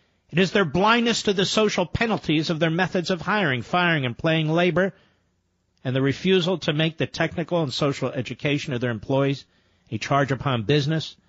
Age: 50-69